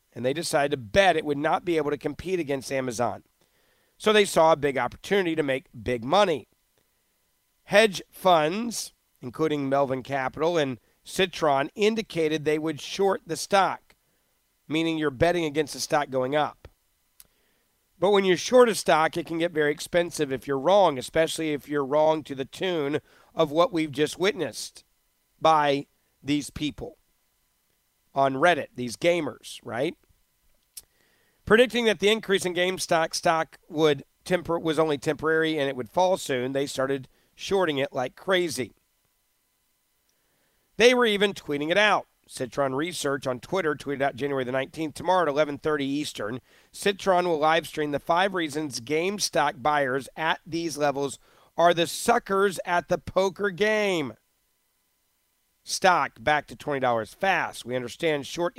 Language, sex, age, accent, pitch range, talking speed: English, male, 40-59, American, 135-175 Hz, 150 wpm